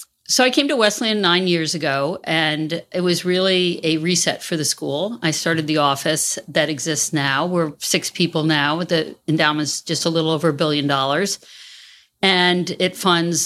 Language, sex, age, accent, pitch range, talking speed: English, female, 50-69, American, 150-175 Hz, 180 wpm